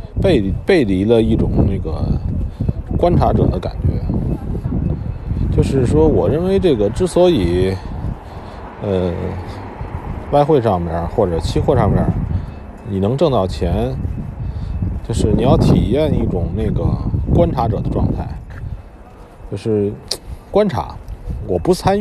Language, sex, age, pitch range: Chinese, male, 50-69, 90-120 Hz